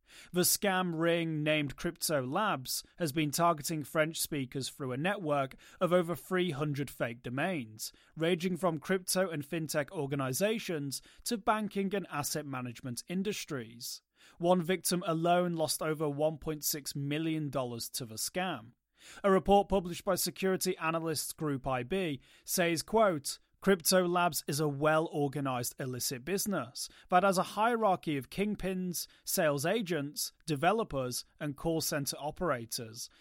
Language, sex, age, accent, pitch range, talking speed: English, male, 30-49, British, 140-180 Hz, 130 wpm